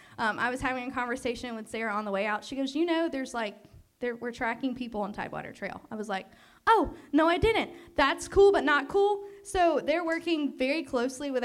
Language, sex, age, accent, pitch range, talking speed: English, female, 10-29, American, 225-285 Hz, 220 wpm